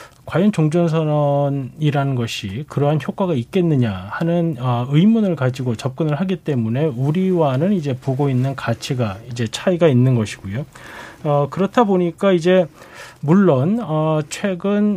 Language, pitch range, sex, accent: Korean, 130-175 Hz, male, native